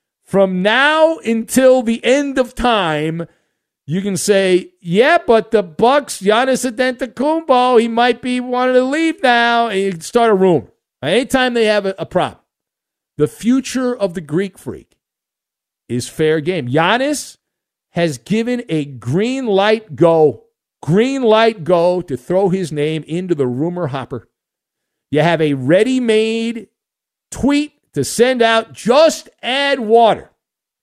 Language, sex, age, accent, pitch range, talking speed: English, male, 50-69, American, 170-255 Hz, 140 wpm